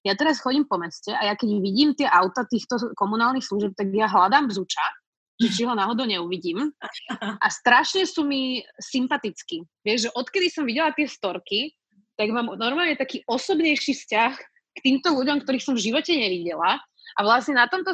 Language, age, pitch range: Slovak, 20-39, 210-265 Hz